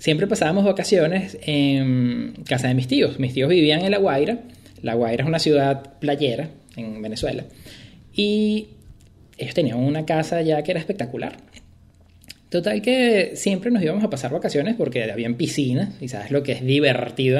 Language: English